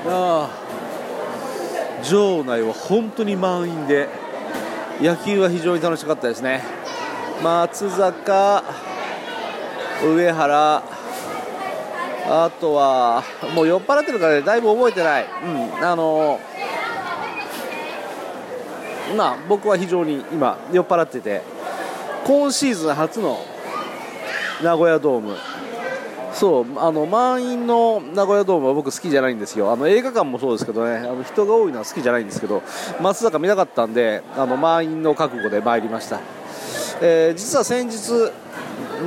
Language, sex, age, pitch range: Japanese, male, 40-59, 155-205 Hz